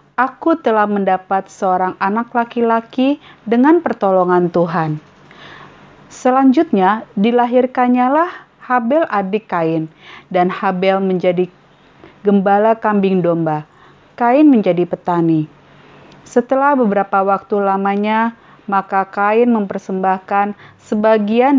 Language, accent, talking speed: Indonesian, native, 85 wpm